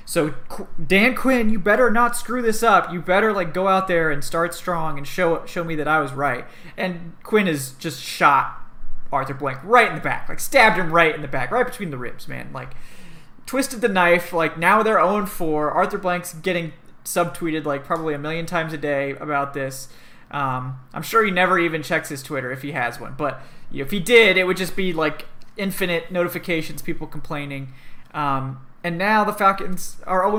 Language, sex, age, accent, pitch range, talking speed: English, male, 20-39, American, 150-195 Hz, 205 wpm